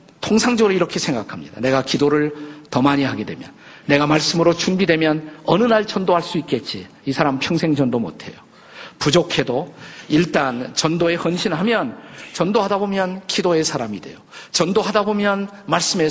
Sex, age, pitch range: male, 50-69, 150-200 Hz